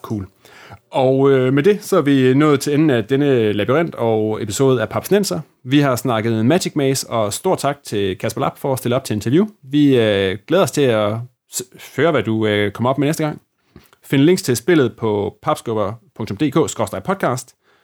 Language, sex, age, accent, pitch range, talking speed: Danish, male, 30-49, native, 110-150 Hz, 185 wpm